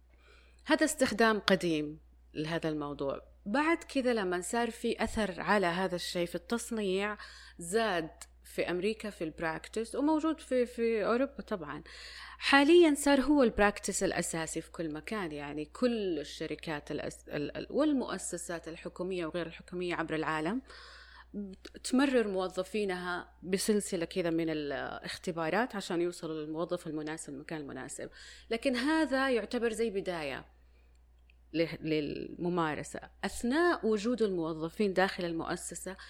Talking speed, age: 110 wpm, 30-49